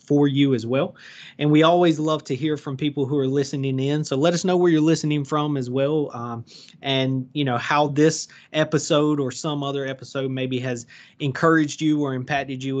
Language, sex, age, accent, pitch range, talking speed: English, male, 30-49, American, 135-155 Hz, 205 wpm